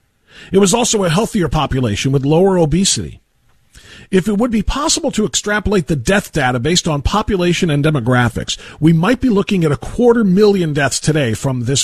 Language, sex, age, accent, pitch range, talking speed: English, male, 40-59, American, 125-185 Hz, 180 wpm